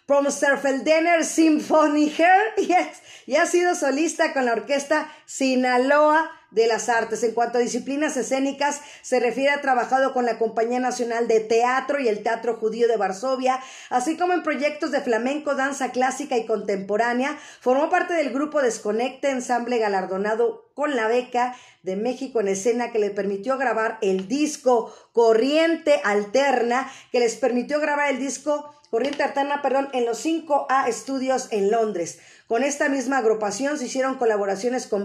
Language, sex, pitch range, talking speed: Spanish, female, 230-280 Hz, 155 wpm